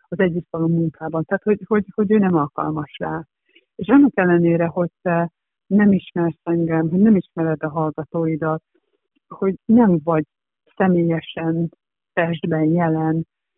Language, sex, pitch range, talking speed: Hungarian, female, 165-190 Hz, 135 wpm